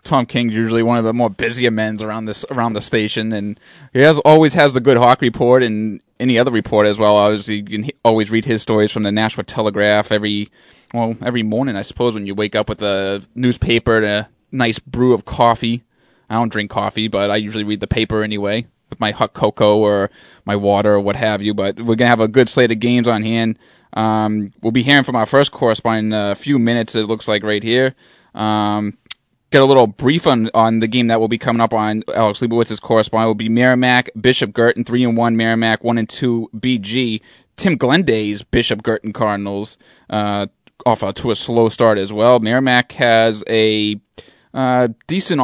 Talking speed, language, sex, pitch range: 205 wpm, English, male, 105-120 Hz